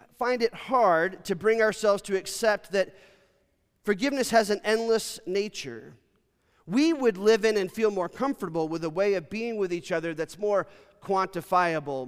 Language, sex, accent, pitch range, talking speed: English, male, American, 160-205 Hz, 165 wpm